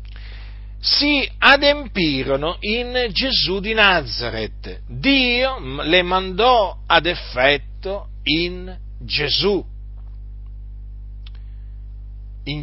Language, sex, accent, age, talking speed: Italian, male, native, 50-69, 65 wpm